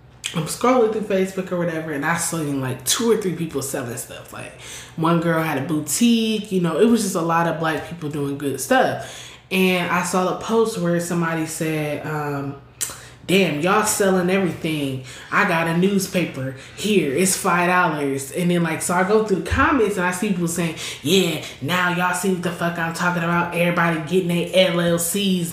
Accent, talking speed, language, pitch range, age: American, 195 wpm, English, 165-205 Hz, 20-39